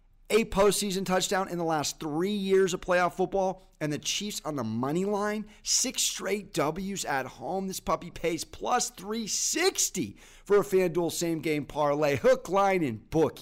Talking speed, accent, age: 165 wpm, American, 30-49